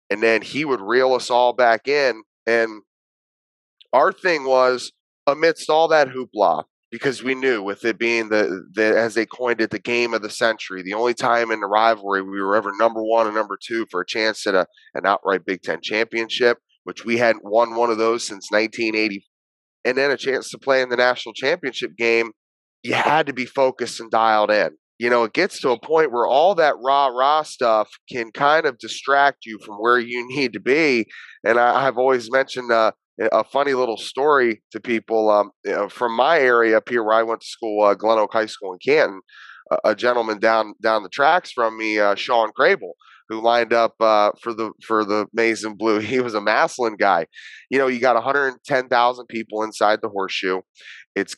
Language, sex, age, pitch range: English, male, 30-49, 110-125 Hz